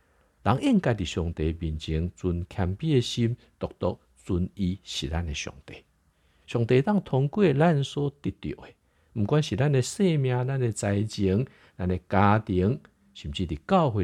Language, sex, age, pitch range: Chinese, male, 60-79, 80-125 Hz